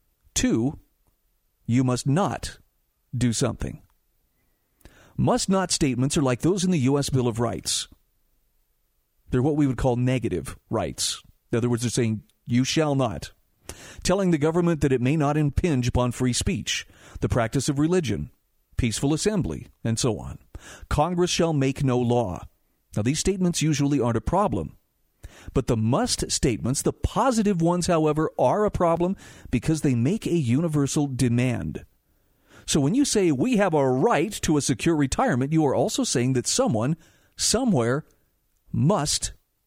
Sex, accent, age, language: male, American, 50-69, English